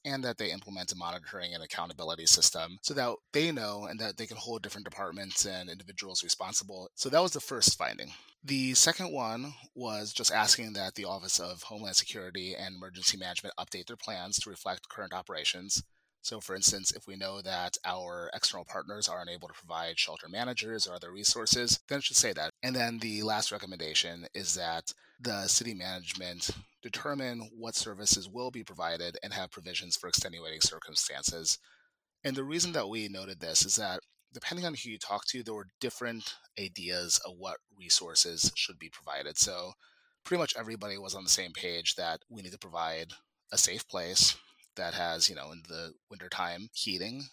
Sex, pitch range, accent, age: male, 95-125 Hz, American, 30-49